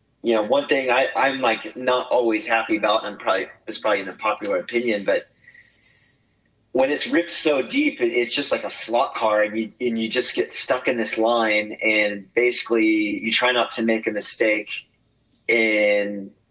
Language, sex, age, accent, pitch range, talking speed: English, male, 30-49, American, 110-125 Hz, 190 wpm